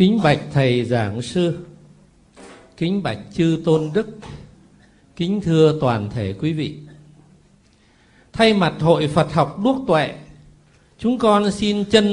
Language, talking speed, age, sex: Vietnamese, 135 wpm, 60-79, male